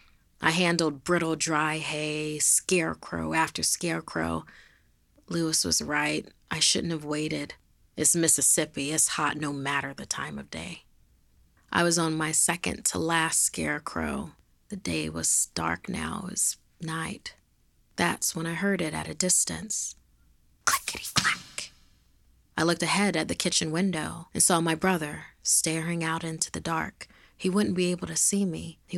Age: 30-49